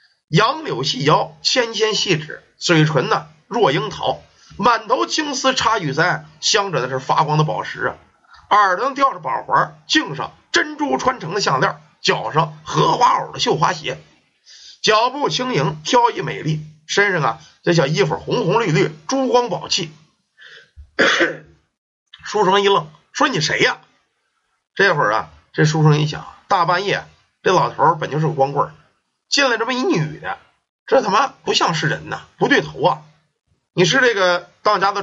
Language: Chinese